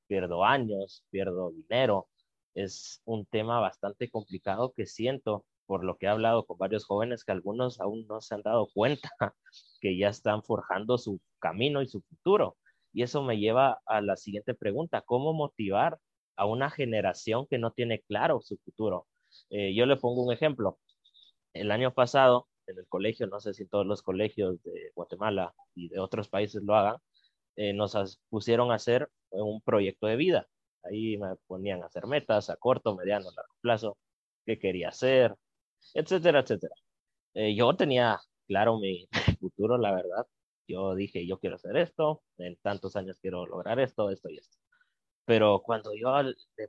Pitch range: 100-125 Hz